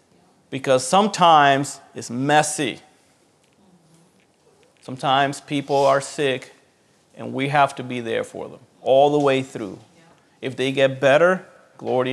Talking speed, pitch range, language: 125 wpm, 135-180 Hz, English